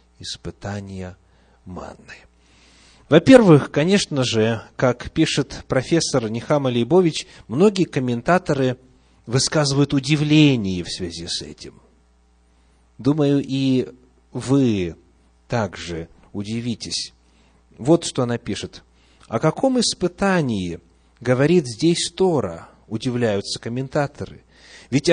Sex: male